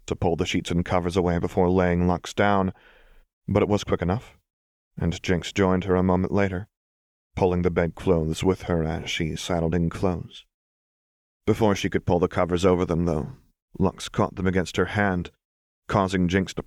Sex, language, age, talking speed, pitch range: male, English, 30-49, 185 wpm, 85-95 Hz